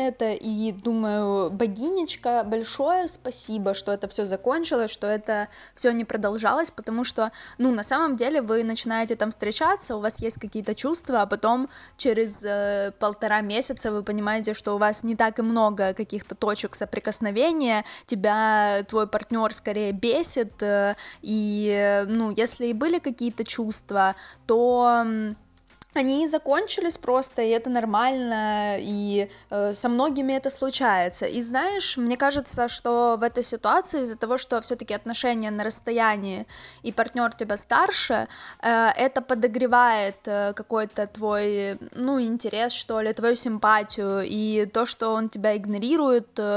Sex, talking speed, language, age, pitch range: female, 140 wpm, Ukrainian, 10-29, 210-250 Hz